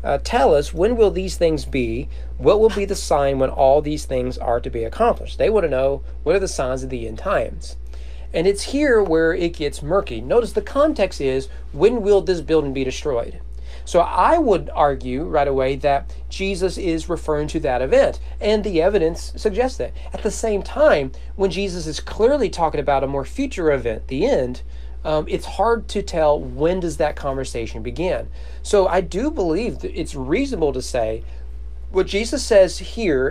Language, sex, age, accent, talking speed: English, male, 40-59, American, 195 wpm